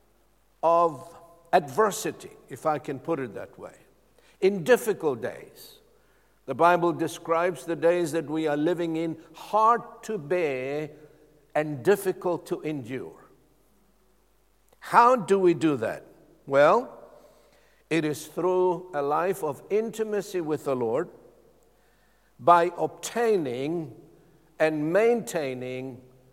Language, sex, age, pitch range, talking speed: English, male, 60-79, 150-190 Hz, 110 wpm